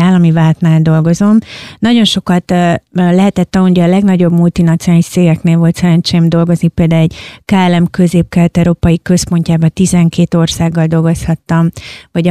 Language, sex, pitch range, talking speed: Hungarian, female, 165-185 Hz, 120 wpm